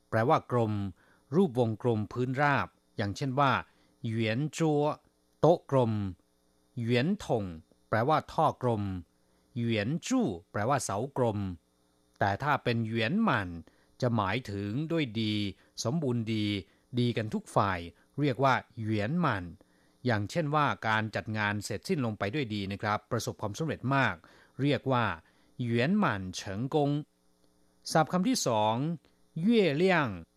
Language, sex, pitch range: Thai, male, 100-140 Hz